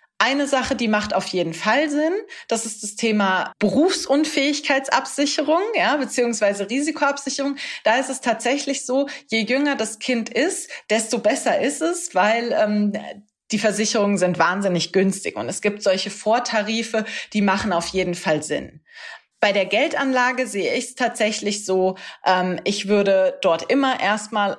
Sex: female